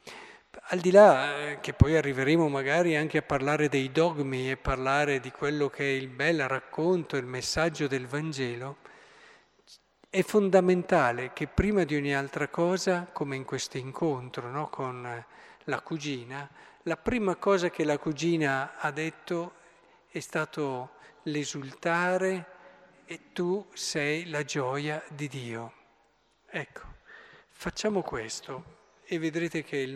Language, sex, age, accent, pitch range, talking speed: Italian, male, 50-69, native, 135-170 Hz, 130 wpm